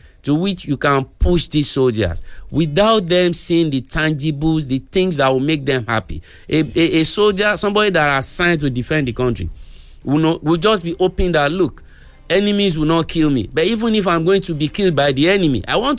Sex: male